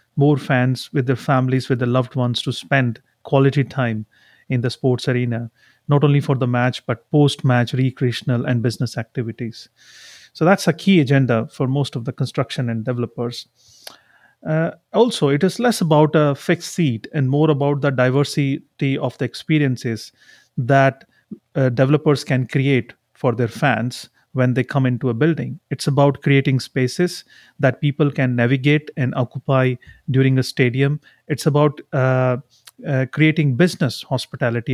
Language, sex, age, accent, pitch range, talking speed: English, male, 30-49, Indian, 125-150 Hz, 155 wpm